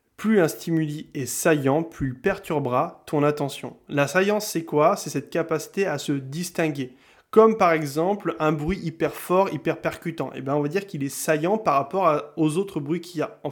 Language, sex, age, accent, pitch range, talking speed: French, male, 20-39, French, 145-185 Hz, 200 wpm